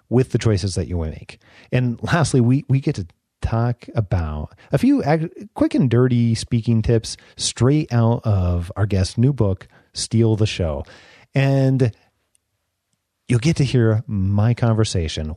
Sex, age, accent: male, 30-49, American